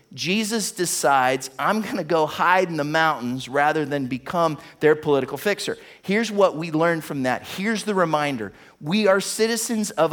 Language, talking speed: English, 165 wpm